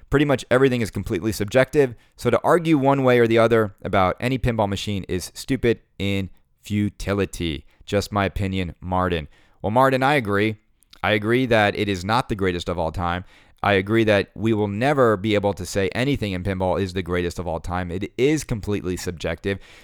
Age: 30-49